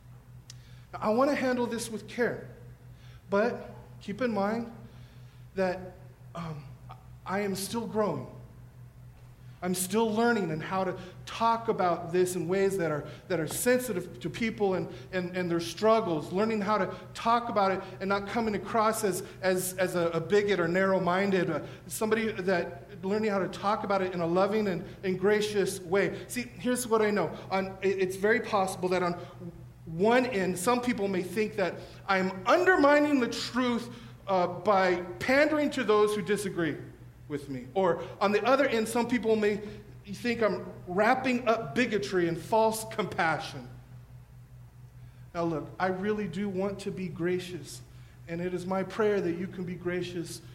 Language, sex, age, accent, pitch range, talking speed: English, male, 40-59, American, 145-210 Hz, 170 wpm